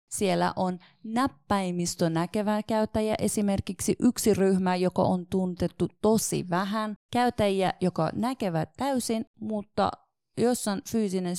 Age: 30-49